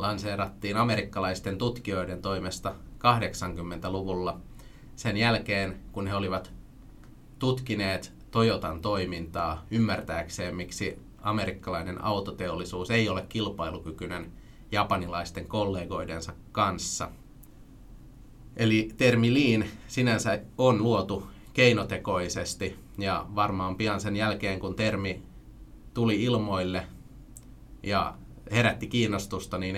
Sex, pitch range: male, 95-110 Hz